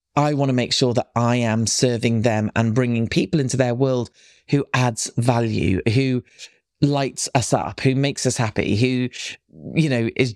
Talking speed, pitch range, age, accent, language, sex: 180 wpm, 120-165 Hz, 30-49, British, English, male